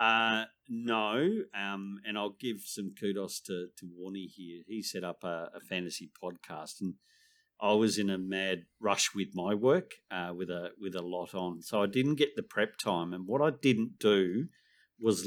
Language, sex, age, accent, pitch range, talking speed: English, male, 50-69, Australian, 90-110 Hz, 195 wpm